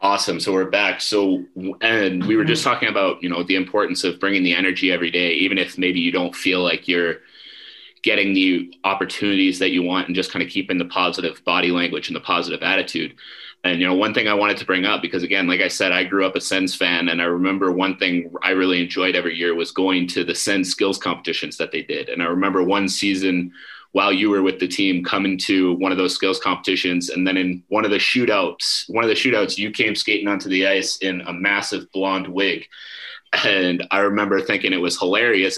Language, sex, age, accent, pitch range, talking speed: English, male, 30-49, American, 90-95 Hz, 230 wpm